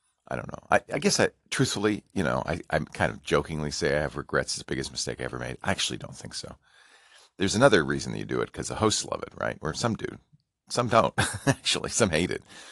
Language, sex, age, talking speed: English, male, 40-59, 245 wpm